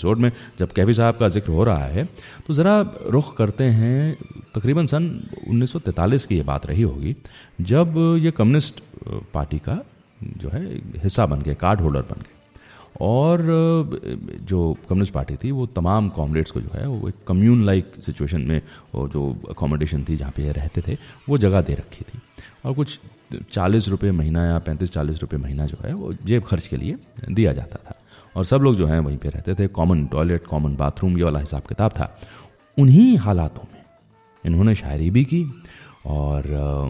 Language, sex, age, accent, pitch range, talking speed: English, male, 30-49, Indian, 80-115 Hz, 145 wpm